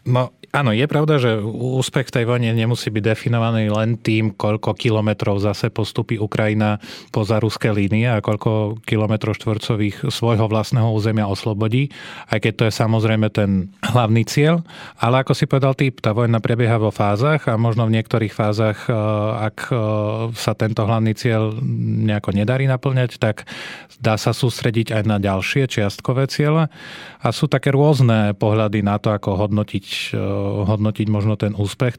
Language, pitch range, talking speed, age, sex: Slovak, 110-125 Hz, 155 wpm, 30-49, male